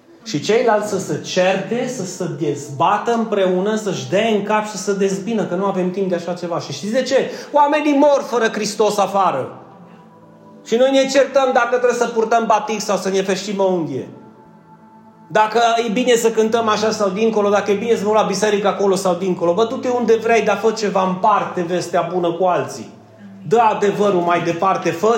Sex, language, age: male, Romanian, 30-49